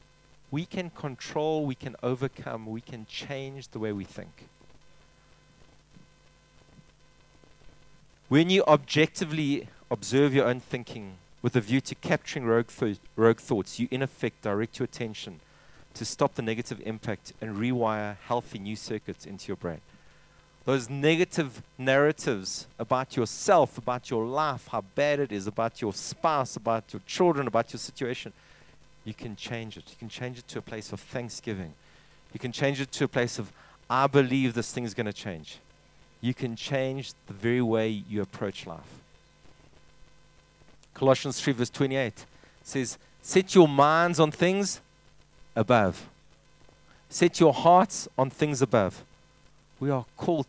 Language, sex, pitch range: English, male, 110-140 Hz